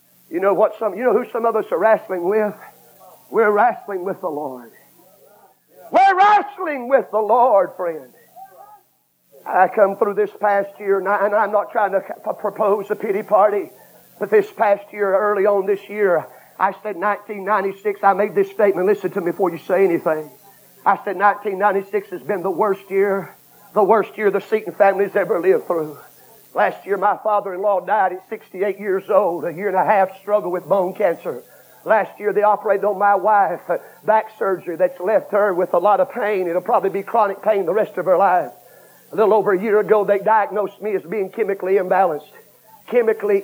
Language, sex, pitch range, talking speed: English, male, 190-215 Hz, 190 wpm